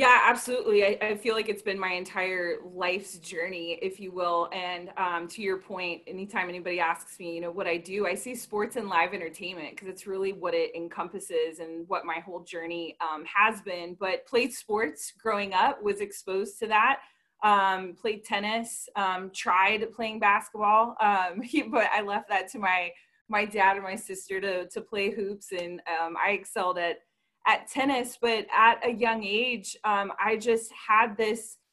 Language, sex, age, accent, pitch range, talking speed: English, female, 20-39, American, 180-215 Hz, 185 wpm